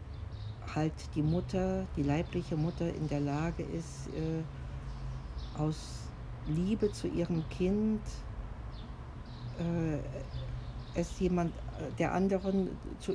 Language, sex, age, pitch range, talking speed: German, female, 60-79, 105-165 Hz, 100 wpm